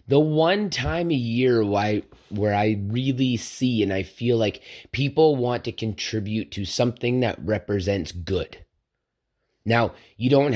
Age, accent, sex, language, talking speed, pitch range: 30-49, American, male, English, 150 wpm, 110-135 Hz